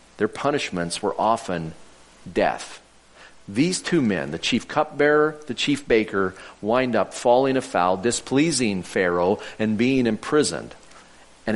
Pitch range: 95-155 Hz